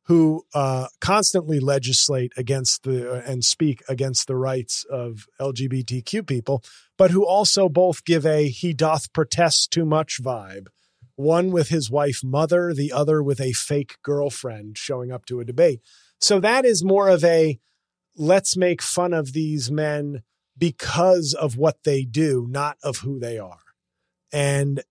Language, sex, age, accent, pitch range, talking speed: English, male, 30-49, American, 130-170 Hz, 160 wpm